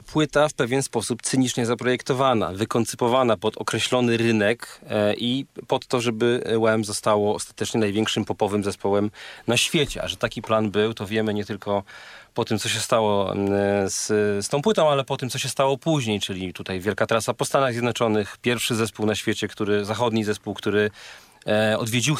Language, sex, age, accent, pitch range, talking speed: Polish, male, 40-59, native, 110-135 Hz, 170 wpm